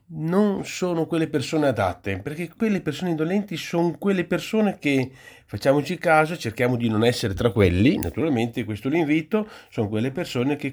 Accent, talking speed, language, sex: native, 155 wpm, Italian, male